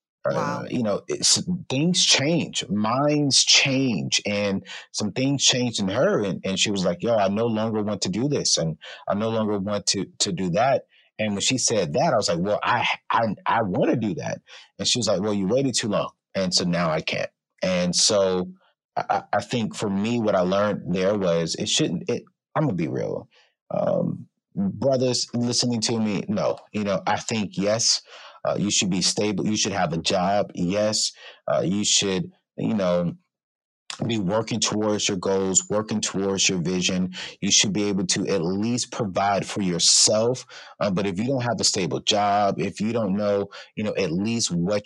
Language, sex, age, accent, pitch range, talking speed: English, male, 30-49, American, 100-125 Hz, 200 wpm